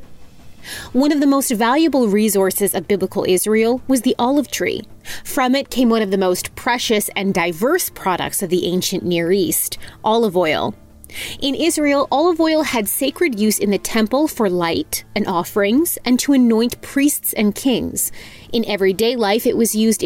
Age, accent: 30-49, American